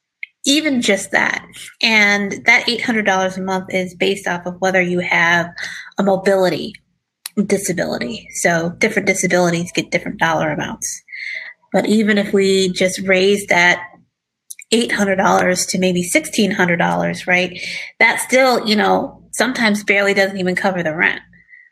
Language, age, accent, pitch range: English, 30-49, American, 180-205 Hz